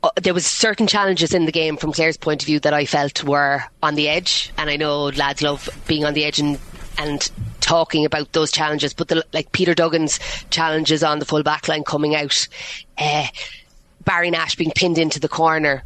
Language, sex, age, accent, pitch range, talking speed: English, female, 20-39, Irish, 150-170 Hz, 205 wpm